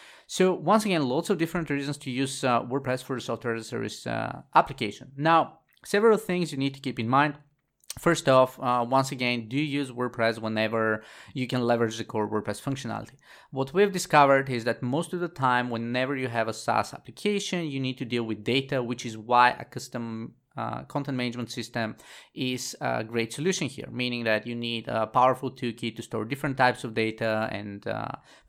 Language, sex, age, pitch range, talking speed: English, male, 20-39, 115-140 Hz, 195 wpm